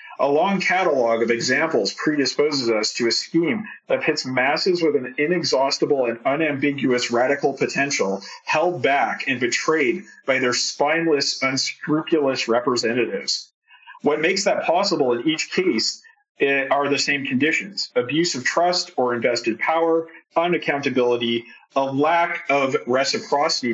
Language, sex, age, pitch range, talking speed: English, male, 40-59, 125-180 Hz, 130 wpm